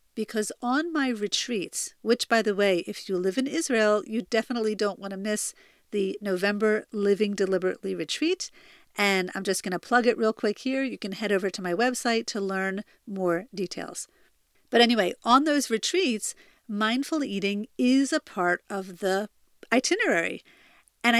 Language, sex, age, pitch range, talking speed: English, female, 50-69, 195-255 Hz, 165 wpm